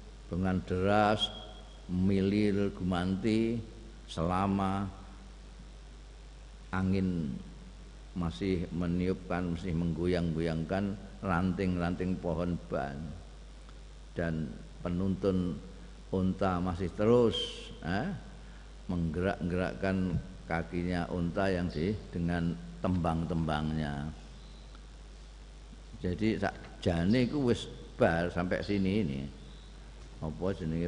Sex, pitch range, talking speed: male, 85-100 Hz, 70 wpm